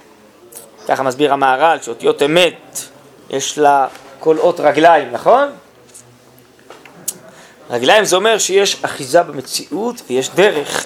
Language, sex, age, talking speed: Hebrew, male, 20-39, 105 wpm